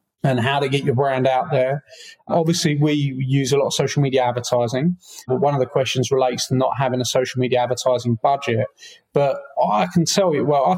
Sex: male